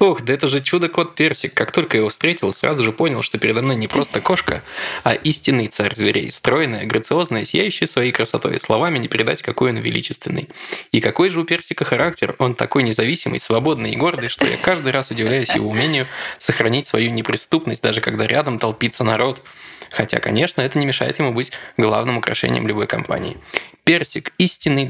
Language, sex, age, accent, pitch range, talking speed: Russian, male, 20-39, native, 115-155 Hz, 180 wpm